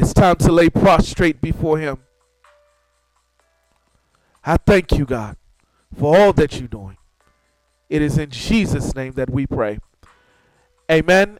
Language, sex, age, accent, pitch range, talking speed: English, male, 40-59, American, 155-195 Hz, 130 wpm